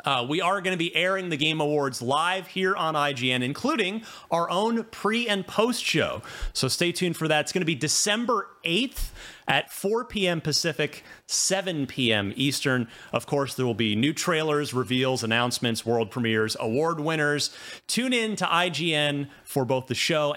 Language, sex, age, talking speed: English, male, 30-49, 175 wpm